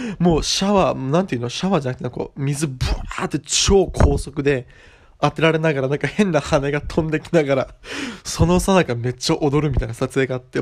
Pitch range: 125-160 Hz